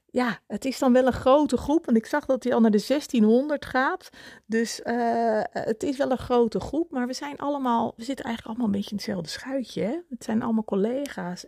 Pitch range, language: 185-240 Hz, Dutch